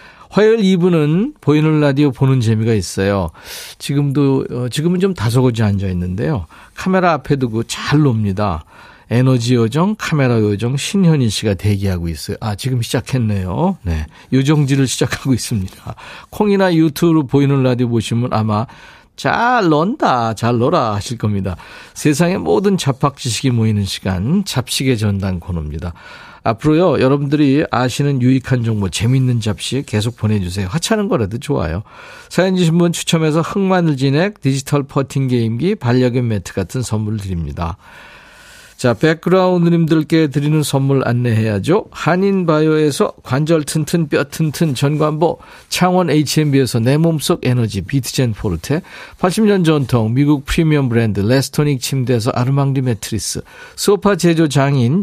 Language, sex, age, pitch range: Korean, male, 40-59, 115-155 Hz